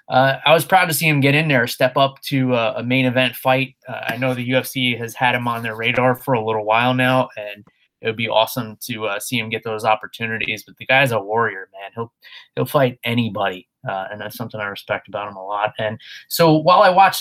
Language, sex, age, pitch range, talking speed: English, male, 20-39, 120-150 Hz, 250 wpm